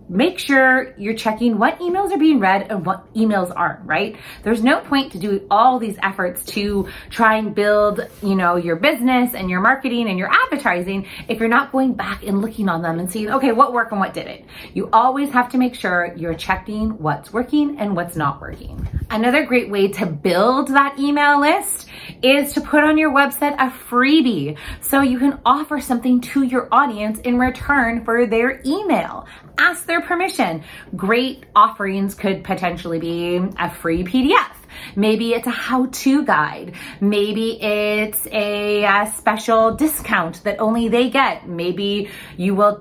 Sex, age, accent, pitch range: female, 30-49, American, 195-265 Hz